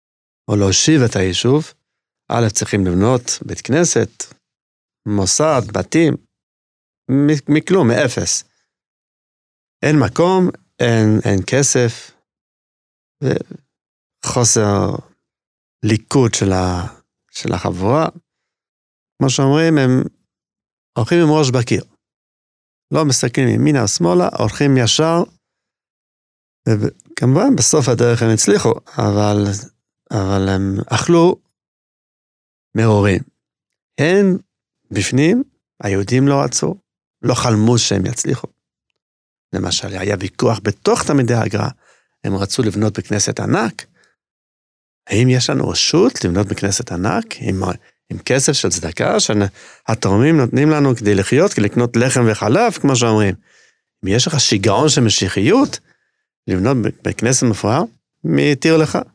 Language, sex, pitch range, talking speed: Hebrew, male, 100-135 Hz, 100 wpm